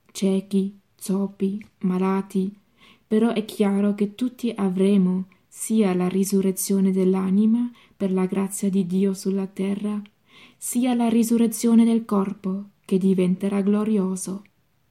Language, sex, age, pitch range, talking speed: Italian, female, 20-39, 190-210 Hz, 115 wpm